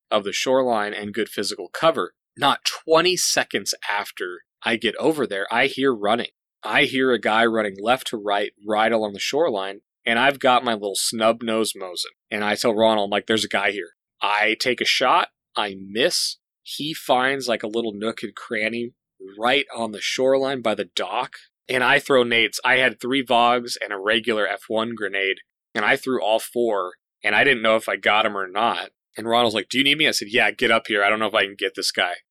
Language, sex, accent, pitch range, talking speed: English, male, American, 105-125 Hz, 220 wpm